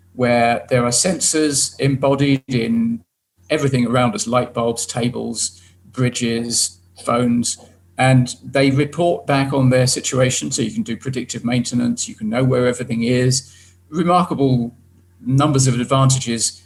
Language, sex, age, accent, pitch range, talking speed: English, male, 40-59, British, 115-135 Hz, 135 wpm